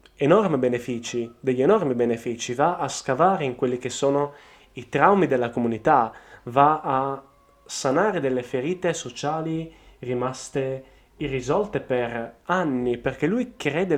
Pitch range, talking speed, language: 120-140 Hz, 125 wpm, Italian